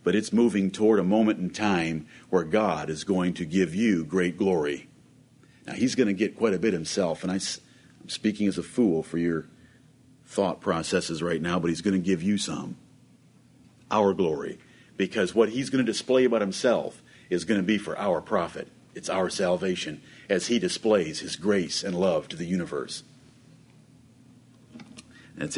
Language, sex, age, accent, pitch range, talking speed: English, male, 50-69, American, 90-115 Hz, 180 wpm